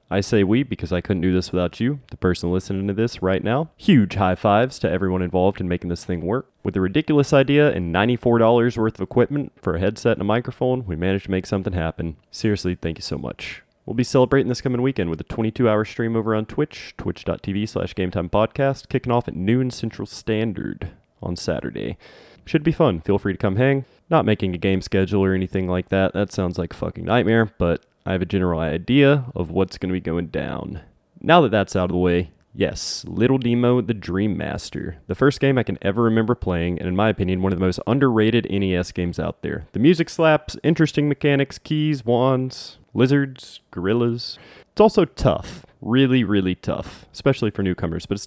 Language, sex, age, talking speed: English, male, 20-39, 210 wpm